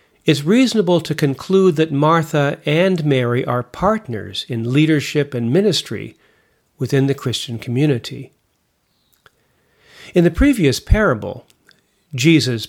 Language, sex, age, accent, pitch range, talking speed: English, male, 50-69, American, 125-155 Hz, 110 wpm